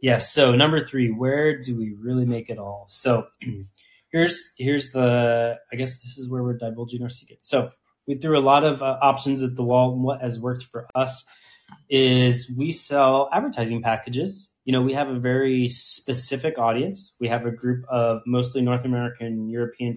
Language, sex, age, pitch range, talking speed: English, male, 20-39, 115-135 Hz, 190 wpm